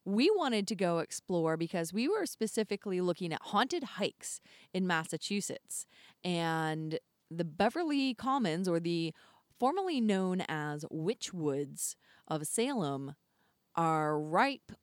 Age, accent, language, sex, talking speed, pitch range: 30-49, American, English, female, 115 wpm, 170-225 Hz